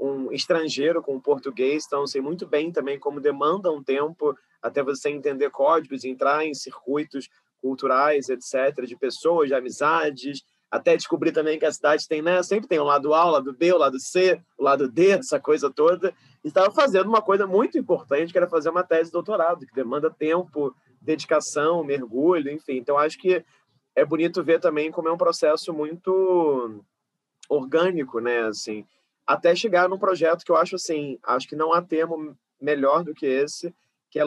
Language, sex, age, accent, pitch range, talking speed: Portuguese, male, 20-39, Brazilian, 140-175 Hz, 195 wpm